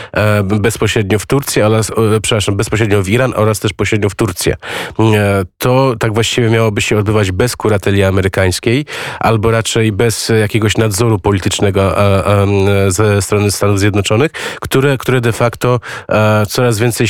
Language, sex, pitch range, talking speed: Polish, male, 100-115 Hz, 130 wpm